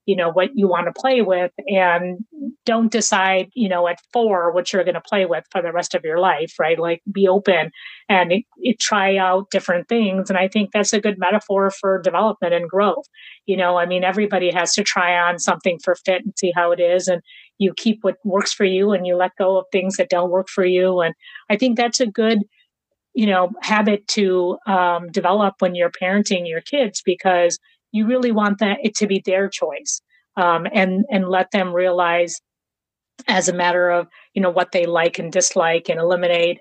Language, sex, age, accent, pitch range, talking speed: English, female, 30-49, American, 180-210 Hz, 210 wpm